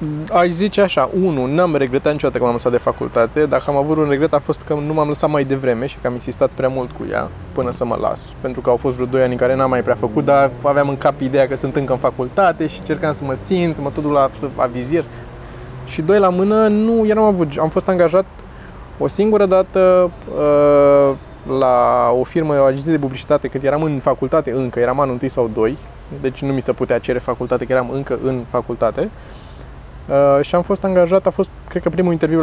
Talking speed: 225 wpm